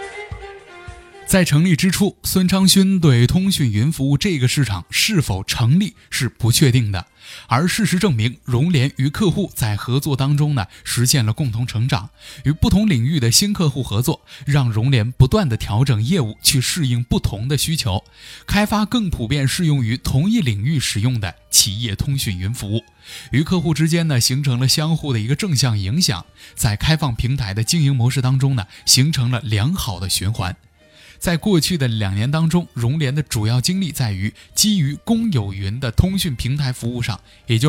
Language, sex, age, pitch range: Chinese, male, 20-39, 115-160 Hz